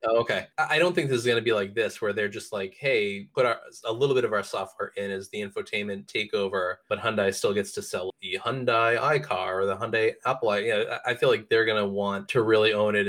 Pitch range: 95-155 Hz